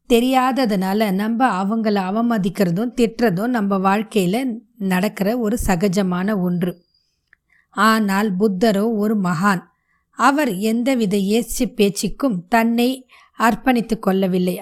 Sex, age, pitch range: female, 20-39, 205-250 Hz